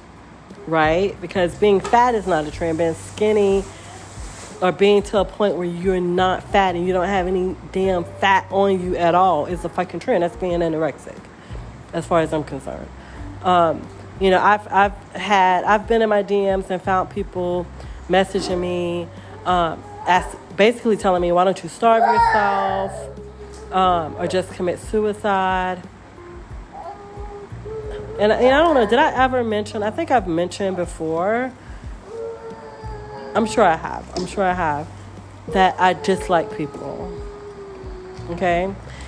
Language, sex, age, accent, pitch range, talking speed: English, female, 30-49, American, 160-200 Hz, 155 wpm